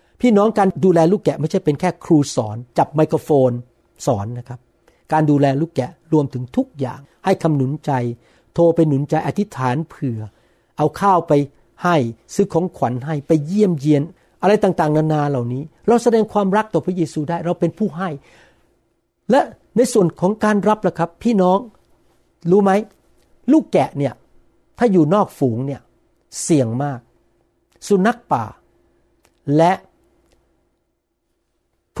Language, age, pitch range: Thai, 60-79, 140-190 Hz